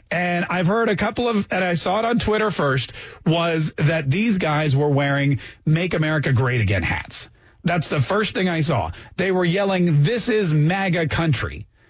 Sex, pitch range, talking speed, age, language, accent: male, 140-195 Hz, 185 wpm, 40-59, English, American